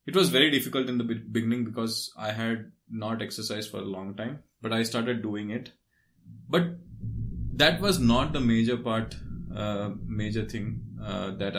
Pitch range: 105-120 Hz